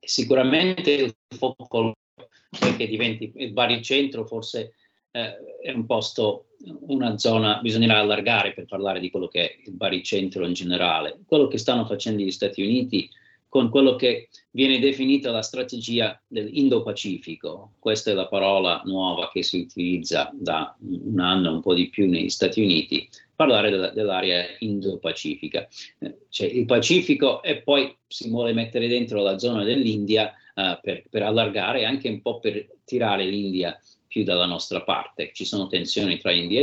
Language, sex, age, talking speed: Italian, male, 40-59, 155 wpm